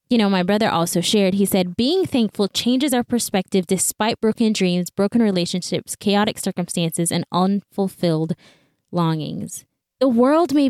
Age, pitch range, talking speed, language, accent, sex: 10-29, 180-230 Hz, 145 wpm, English, American, female